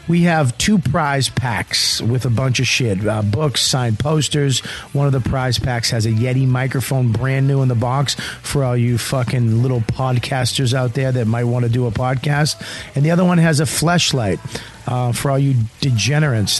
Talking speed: 200 wpm